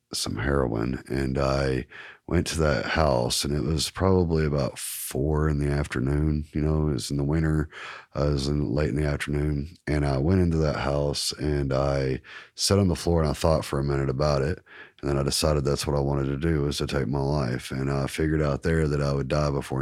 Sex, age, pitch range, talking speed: male, 30-49, 70-75 Hz, 230 wpm